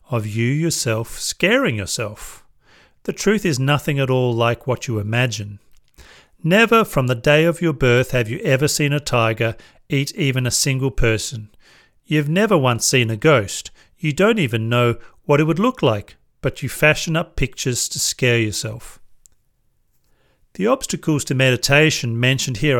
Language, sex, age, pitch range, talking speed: English, male, 40-59, 115-150 Hz, 165 wpm